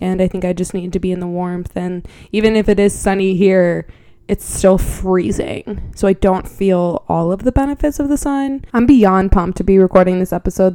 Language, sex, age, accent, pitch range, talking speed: English, female, 20-39, American, 180-215 Hz, 225 wpm